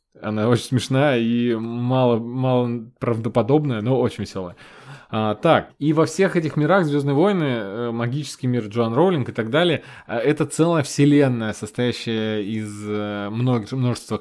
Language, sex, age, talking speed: Russian, male, 20-39, 125 wpm